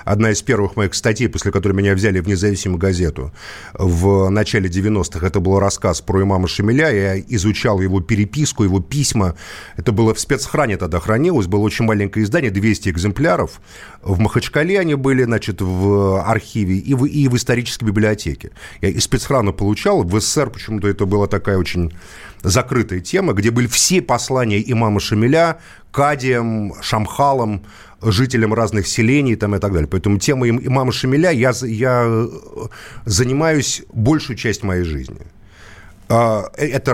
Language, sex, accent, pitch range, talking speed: Russian, male, native, 100-130 Hz, 150 wpm